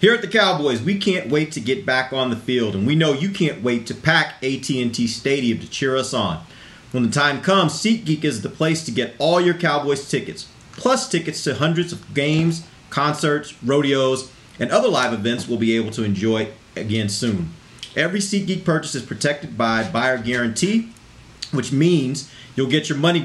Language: English